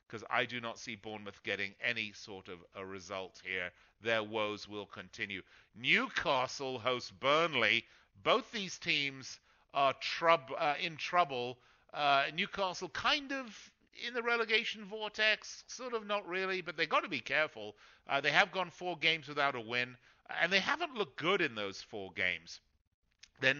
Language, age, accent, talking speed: English, 50-69, British, 160 wpm